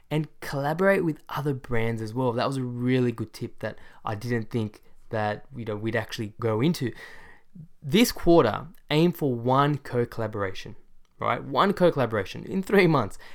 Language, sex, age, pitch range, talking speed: English, male, 10-29, 110-150 Hz, 155 wpm